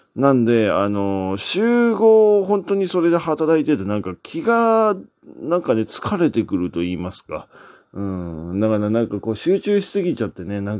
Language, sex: Japanese, male